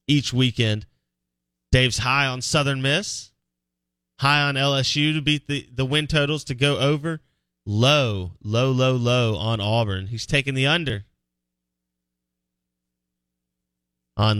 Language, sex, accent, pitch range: English, male, American, 95-140 Hz